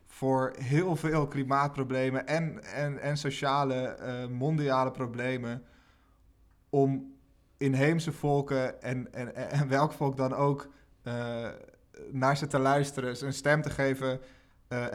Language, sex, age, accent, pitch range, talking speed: Dutch, male, 20-39, Dutch, 130-150 Hz, 120 wpm